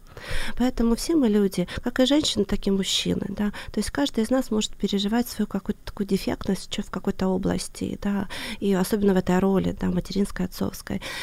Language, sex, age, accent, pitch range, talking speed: Ukrainian, female, 20-39, native, 200-240 Hz, 185 wpm